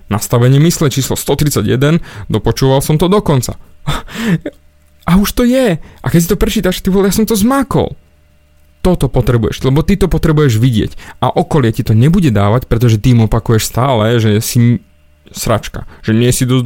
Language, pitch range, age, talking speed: Slovak, 105-135 Hz, 20-39, 175 wpm